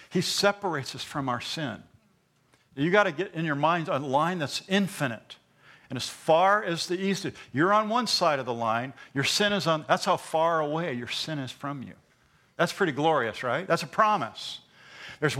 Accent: American